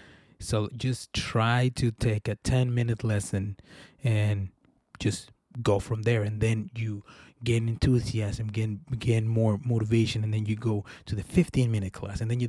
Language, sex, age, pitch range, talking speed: English, male, 20-39, 110-130 Hz, 160 wpm